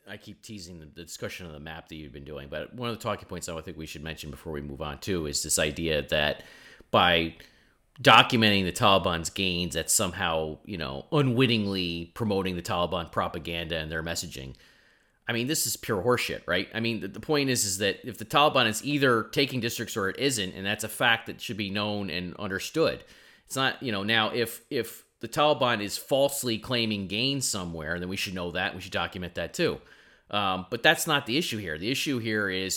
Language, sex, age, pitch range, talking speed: English, male, 30-49, 85-115 Hz, 220 wpm